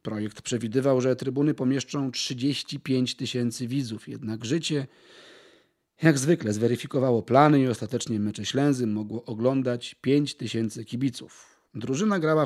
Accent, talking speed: native, 120 wpm